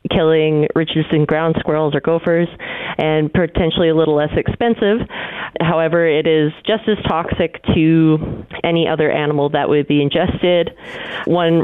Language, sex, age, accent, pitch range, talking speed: English, female, 30-49, American, 150-175 Hz, 140 wpm